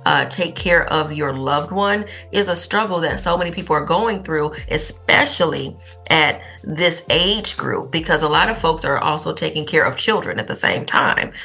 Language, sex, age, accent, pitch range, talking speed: English, female, 40-59, American, 150-185 Hz, 195 wpm